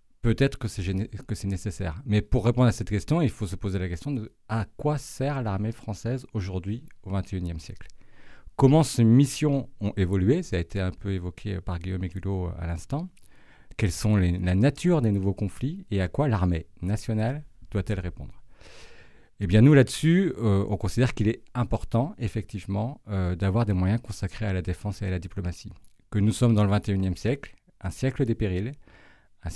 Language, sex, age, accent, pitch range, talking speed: French, male, 40-59, French, 95-115 Hz, 195 wpm